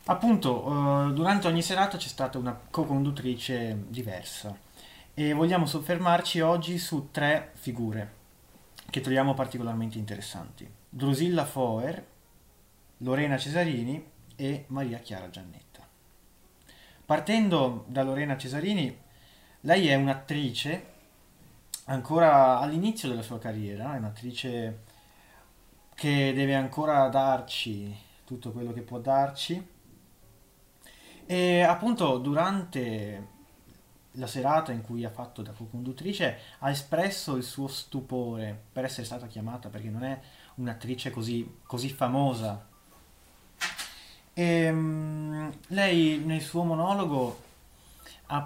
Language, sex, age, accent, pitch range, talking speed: Italian, male, 30-49, native, 115-155 Hz, 105 wpm